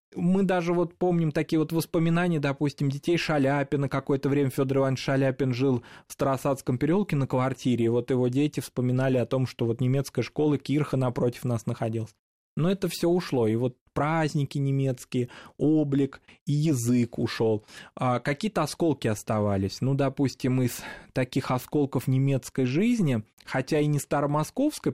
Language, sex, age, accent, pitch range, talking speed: Russian, male, 20-39, native, 125-150 Hz, 150 wpm